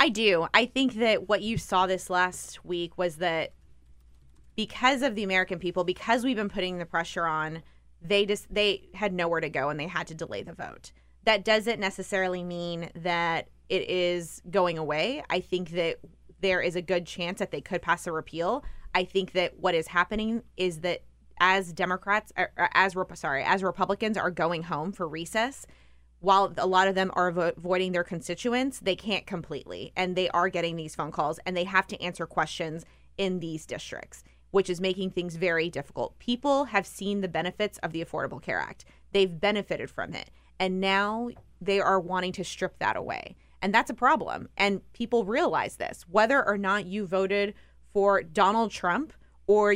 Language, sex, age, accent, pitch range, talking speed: English, female, 20-39, American, 175-205 Hz, 185 wpm